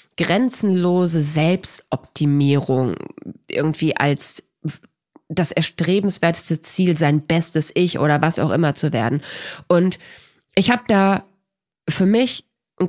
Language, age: German, 30-49